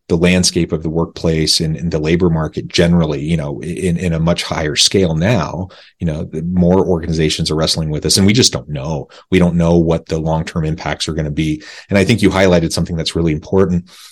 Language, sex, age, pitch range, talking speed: English, male, 30-49, 80-90 Hz, 225 wpm